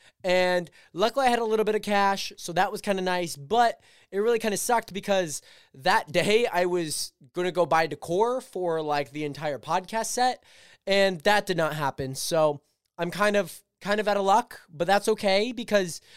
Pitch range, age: 155-200 Hz, 20-39